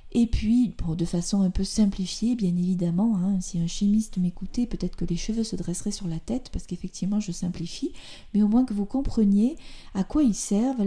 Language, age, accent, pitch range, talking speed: French, 40-59, French, 195-240 Hz, 205 wpm